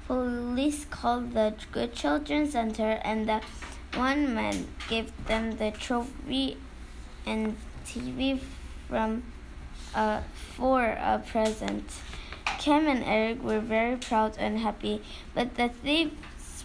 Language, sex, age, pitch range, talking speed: English, female, 10-29, 205-250 Hz, 115 wpm